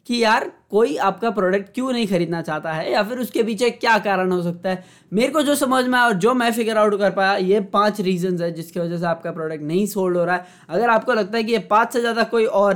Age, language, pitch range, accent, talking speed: 20-39, Hindi, 170-210 Hz, native, 270 wpm